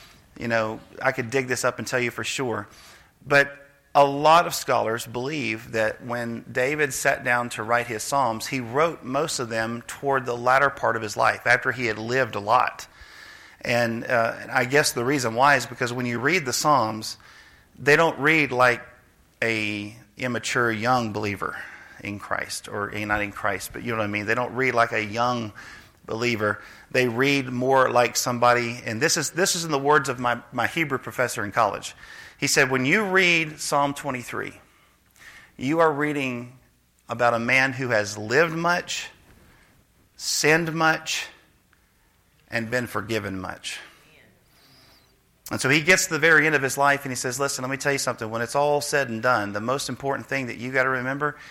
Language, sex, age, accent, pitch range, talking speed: English, male, 40-59, American, 115-140 Hz, 190 wpm